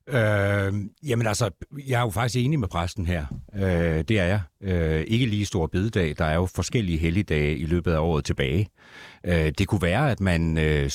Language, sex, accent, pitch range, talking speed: Danish, male, native, 80-105 Hz, 205 wpm